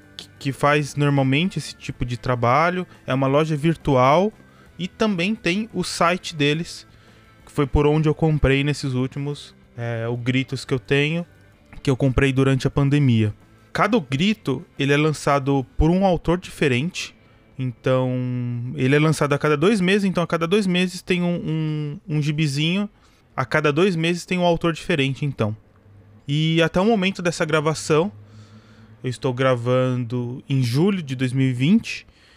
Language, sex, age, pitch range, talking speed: Portuguese, male, 20-39, 130-175 Hz, 155 wpm